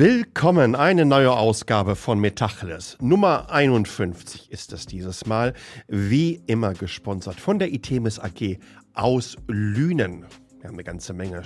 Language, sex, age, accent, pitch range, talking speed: German, male, 50-69, German, 95-140 Hz, 135 wpm